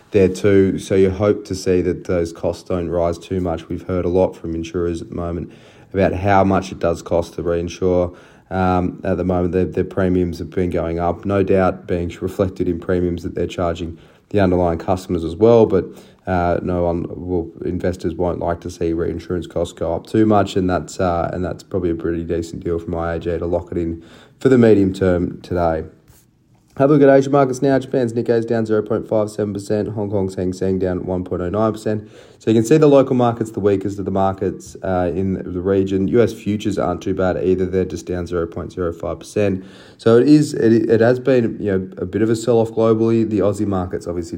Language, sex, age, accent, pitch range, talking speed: English, male, 20-39, Australian, 85-100 Hz, 210 wpm